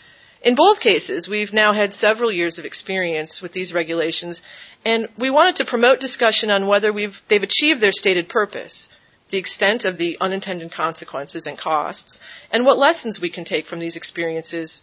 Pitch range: 170-215 Hz